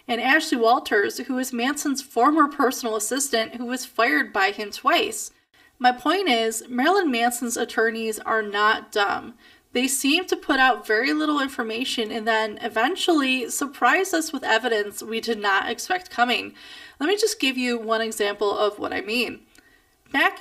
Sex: female